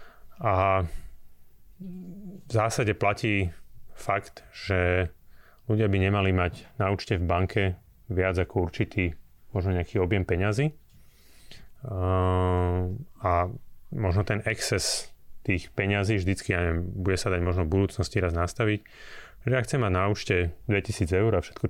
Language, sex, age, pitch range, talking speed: Slovak, male, 30-49, 85-105 Hz, 135 wpm